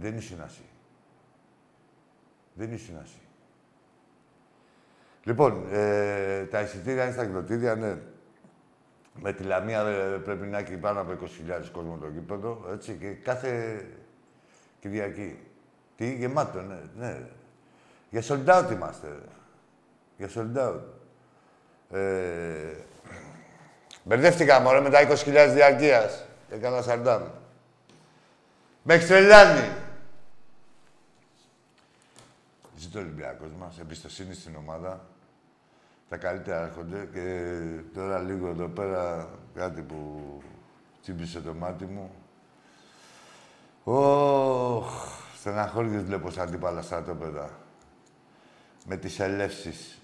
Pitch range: 90-125 Hz